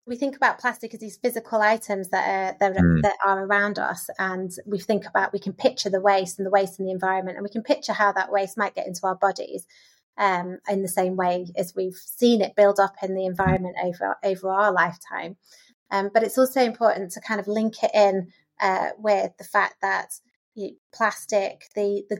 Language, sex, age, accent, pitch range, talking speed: English, female, 30-49, British, 190-215 Hz, 220 wpm